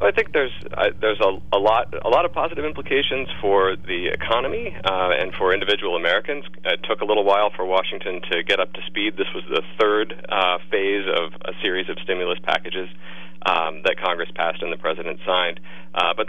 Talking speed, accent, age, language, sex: 205 wpm, American, 40-59, English, male